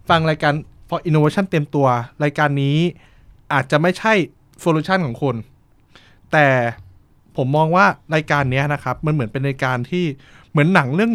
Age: 20-39